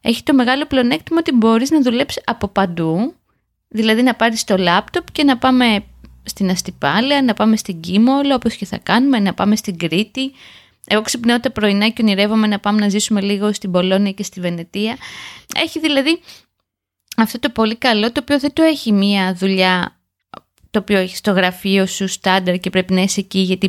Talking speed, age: 185 wpm, 20-39